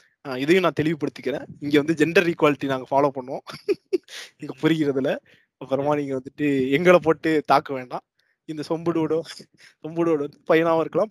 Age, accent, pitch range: 20-39, native, 145-180 Hz